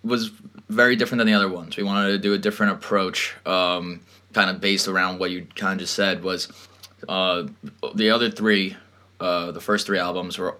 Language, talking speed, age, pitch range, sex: English, 200 wpm, 20-39, 95-105 Hz, male